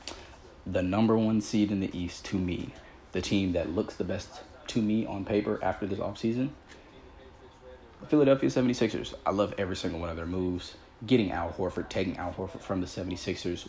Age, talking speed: 30-49, 180 wpm